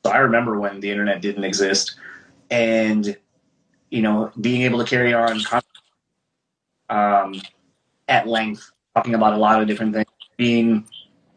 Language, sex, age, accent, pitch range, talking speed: English, male, 30-49, American, 105-120 Hz, 140 wpm